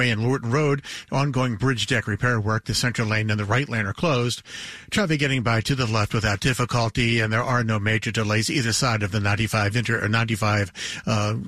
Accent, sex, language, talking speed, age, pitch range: American, male, English, 190 wpm, 50-69, 110-130 Hz